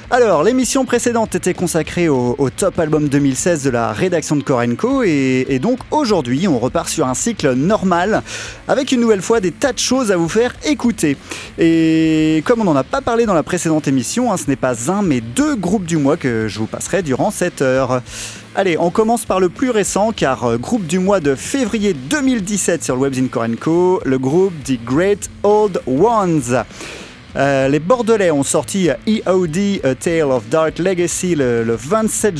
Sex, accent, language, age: male, French, French, 30-49